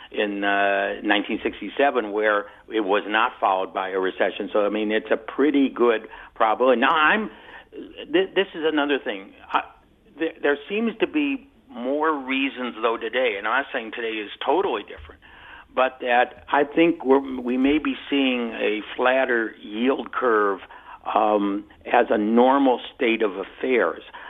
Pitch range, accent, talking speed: 110-140 Hz, American, 150 wpm